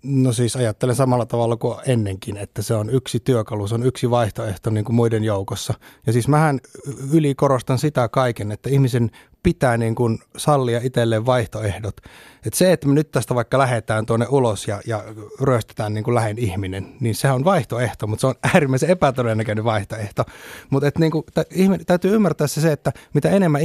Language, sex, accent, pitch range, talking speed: Finnish, male, native, 115-150 Hz, 185 wpm